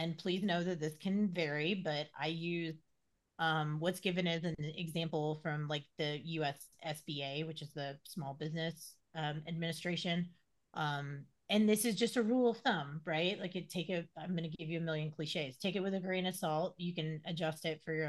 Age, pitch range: 30-49, 155-185 Hz